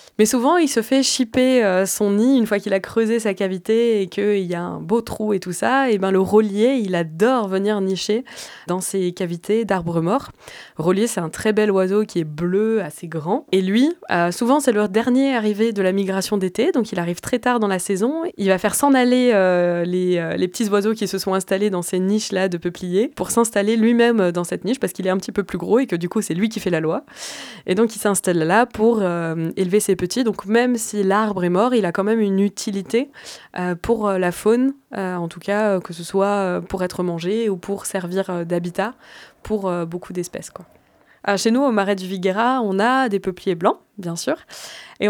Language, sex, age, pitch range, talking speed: French, female, 20-39, 185-235 Hz, 225 wpm